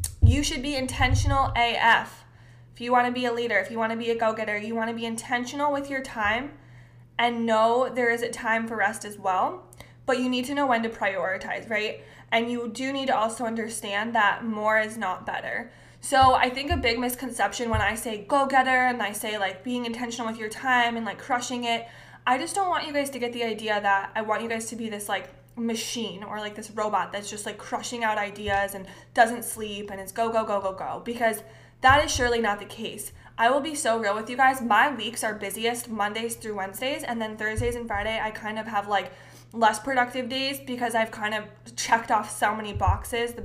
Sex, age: female, 20-39